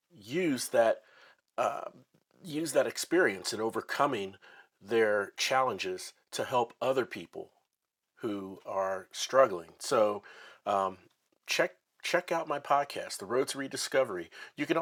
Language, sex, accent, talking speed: English, male, American, 120 wpm